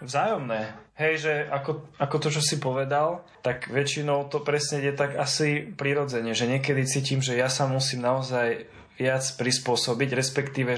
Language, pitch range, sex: Slovak, 125-140 Hz, male